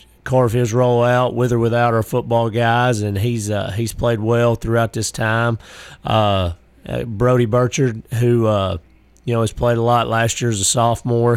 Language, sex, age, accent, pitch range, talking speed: English, male, 30-49, American, 105-120 Hz, 185 wpm